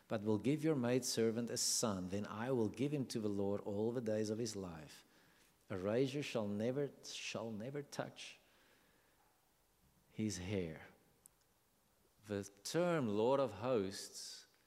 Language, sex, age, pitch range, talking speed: English, male, 50-69, 100-130 Hz, 145 wpm